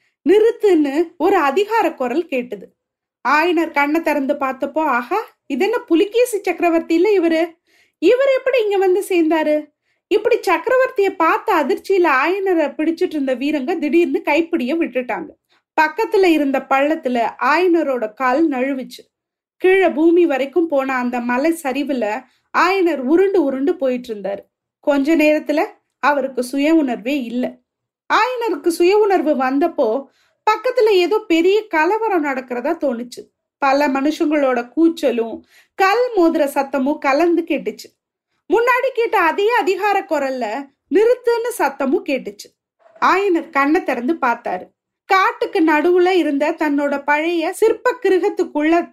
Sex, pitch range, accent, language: female, 280-375 Hz, native, Tamil